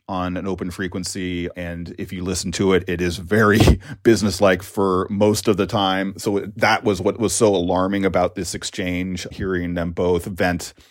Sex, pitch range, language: male, 90-105 Hz, English